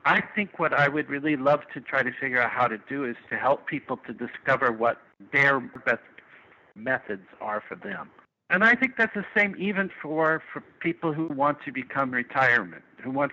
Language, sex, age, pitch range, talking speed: English, male, 60-79, 125-150 Hz, 205 wpm